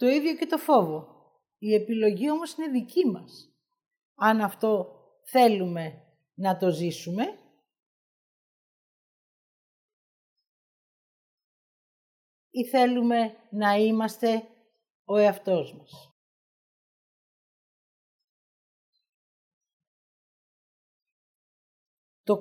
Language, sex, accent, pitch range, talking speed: Greek, female, native, 200-280 Hz, 65 wpm